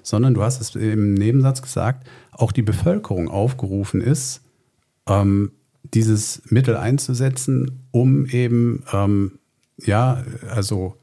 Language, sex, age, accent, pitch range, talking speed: German, male, 50-69, German, 105-125 Hz, 105 wpm